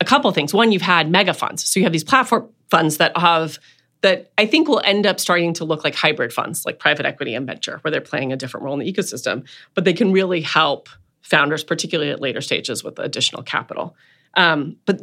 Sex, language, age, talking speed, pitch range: female, English, 30-49, 230 wpm, 140-170 Hz